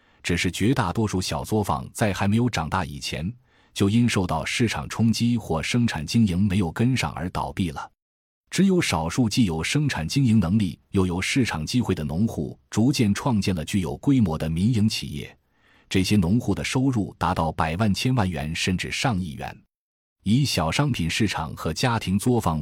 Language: Chinese